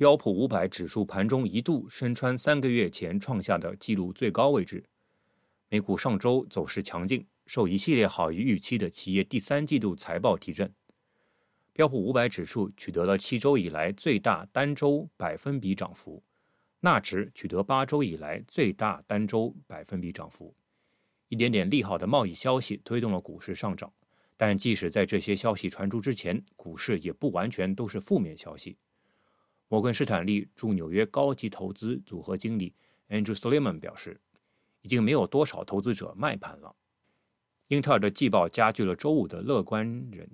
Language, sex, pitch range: Chinese, male, 100-140 Hz